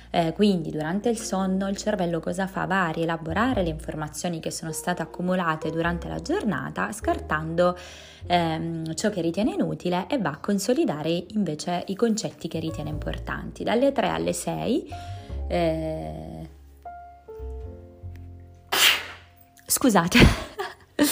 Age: 20-39